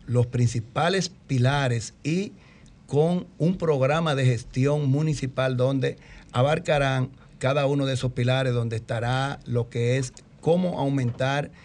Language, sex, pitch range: Spanish, male, 120-145 Hz